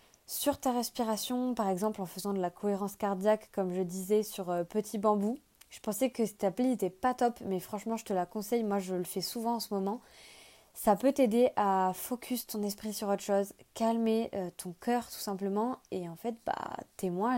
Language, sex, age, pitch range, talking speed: French, female, 20-39, 200-230 Hz, 215 wpm